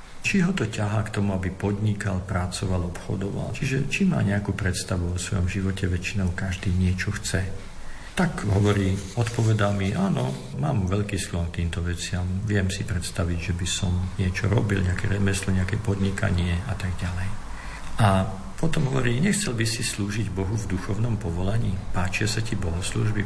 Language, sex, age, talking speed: Slovak, male, 50-69, 165 wpm